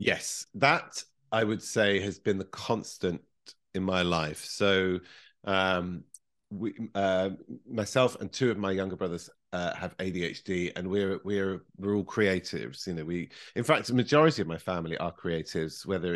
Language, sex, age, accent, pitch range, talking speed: English, male, 40-59, British, 90-110 Hz, 165 wpm